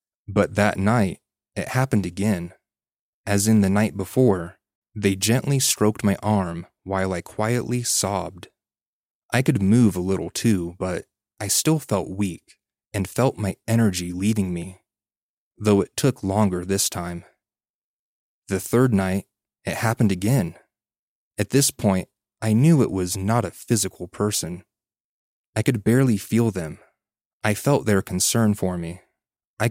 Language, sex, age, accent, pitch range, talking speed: English, male, 20-39, American, 95-115 Hz, 145 wpm